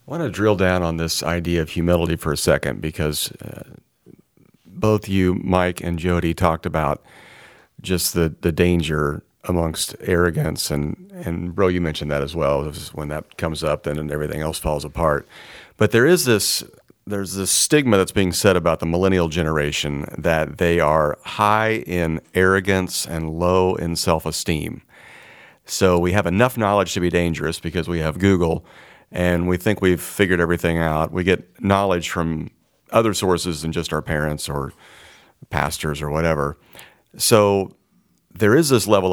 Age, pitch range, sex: 40-59, 80-95 Hz, male